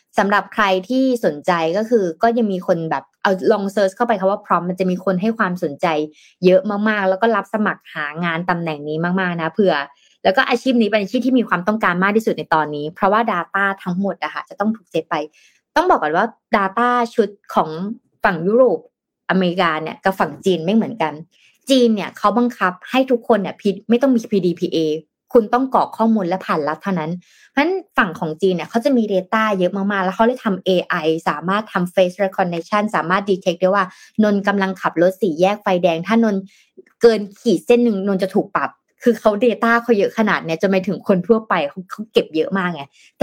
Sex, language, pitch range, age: female, Thai, 180-225 Hz, 20-39